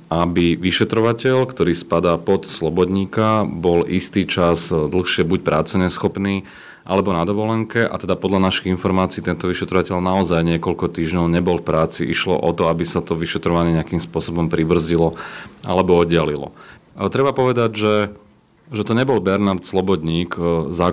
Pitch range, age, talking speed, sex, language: 85-95 Hz, 30-49, 145 wpm, male, Slovak